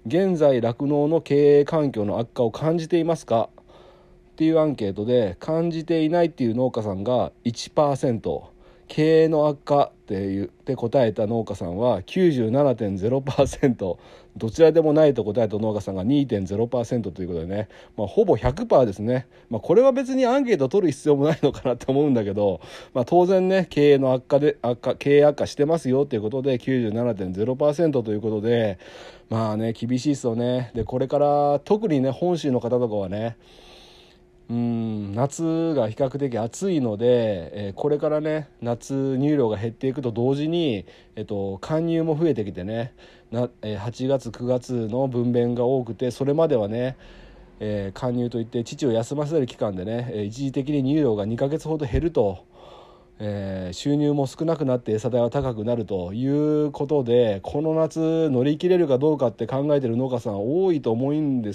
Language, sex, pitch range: Japanese, male, 115-150 Hz